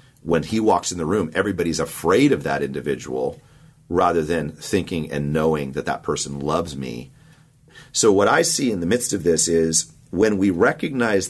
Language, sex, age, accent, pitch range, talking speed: English, male, 40-59, American, 70-85 Hz, 180 wpm